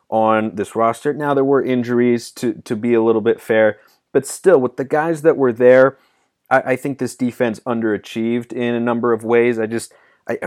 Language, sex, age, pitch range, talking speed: English, male, 30-49, 110-130 Hz, 205 wpm